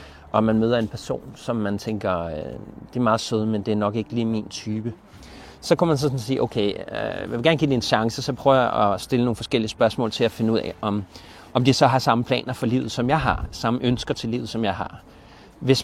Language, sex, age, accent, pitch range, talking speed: Danish, male, 30-49, native, 110-140 Hz, 245 wpm